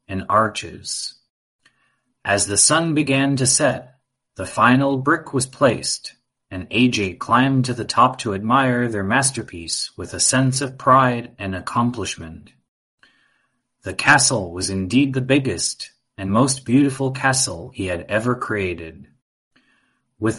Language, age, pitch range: English, 30-49, 100-130 Hz